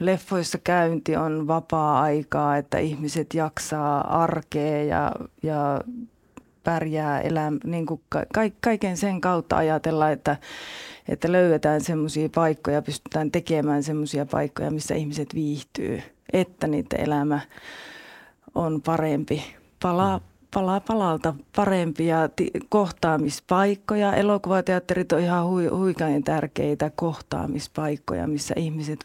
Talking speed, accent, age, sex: 100 wpm, native, 30-49, female